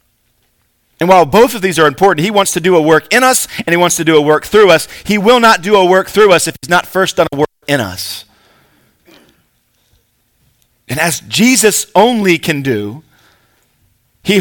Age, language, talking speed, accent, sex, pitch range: 40-59, English, 200 wpm, American, male, 130-190 Hz